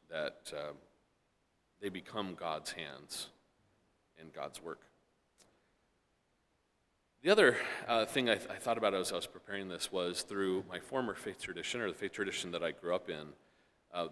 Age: 40-59